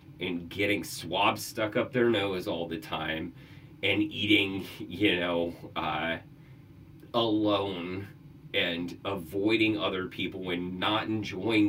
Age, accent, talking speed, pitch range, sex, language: 30-49, American, 120 wpm, 95-140 Hz, male, English